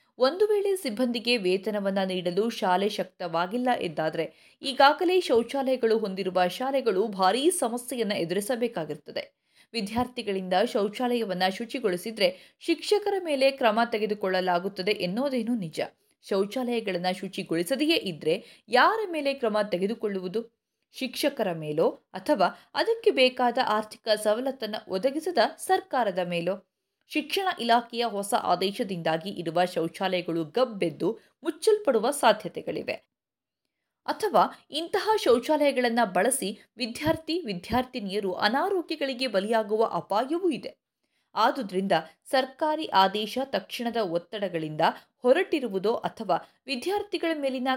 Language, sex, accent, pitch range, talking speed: Kannada, female, native, 190-275 Hz, 85 wpm